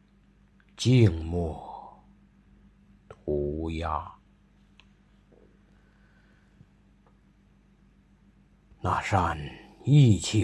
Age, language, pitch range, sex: 50-69, Chinese, 80-125 Hz, male